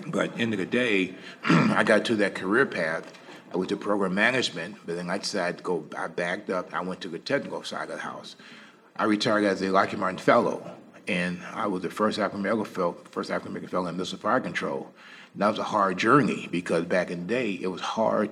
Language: English